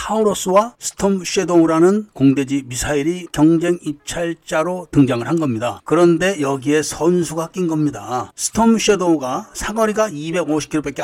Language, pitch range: Korean, 145-200 Hz